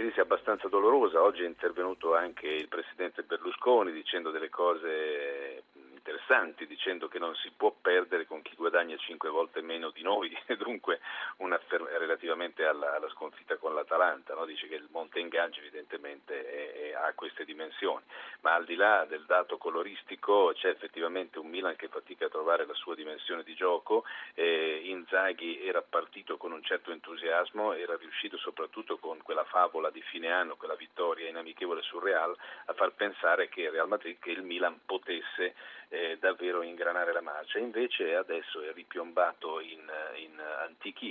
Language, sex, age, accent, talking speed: Italian, male, 40-59, native, 160 wpm